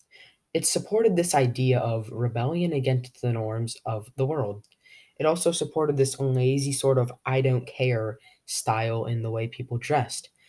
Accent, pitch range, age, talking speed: American, 115-140 Hz, 20-39, 160 wpm